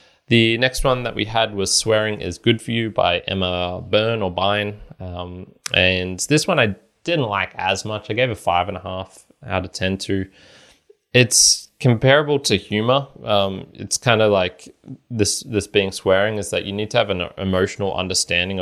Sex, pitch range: male, 90-105 Hz